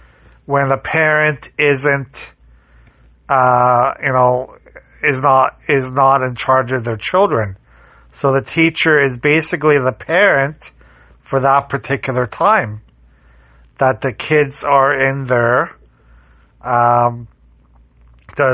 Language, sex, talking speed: English, male, 115 wpm